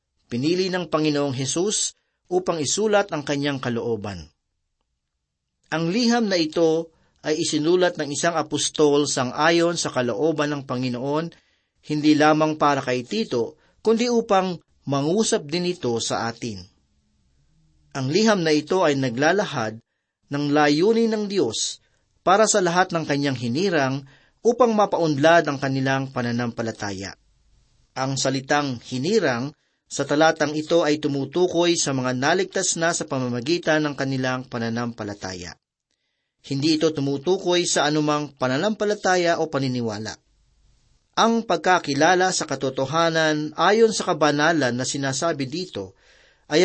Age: 40-59